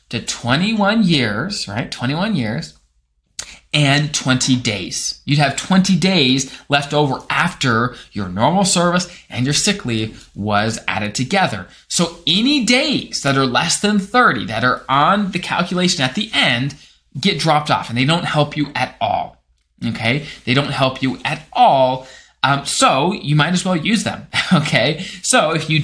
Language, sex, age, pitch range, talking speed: English, male, 20-39, 125-175 Hz, 165 wpm